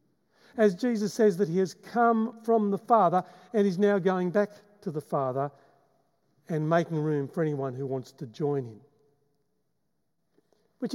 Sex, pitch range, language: male, 155-210 Hz, English